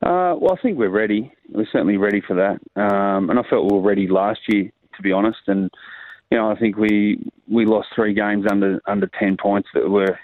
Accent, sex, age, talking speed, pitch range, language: Australian, male, 30-49, 230 wpm, 100-110 Hz, English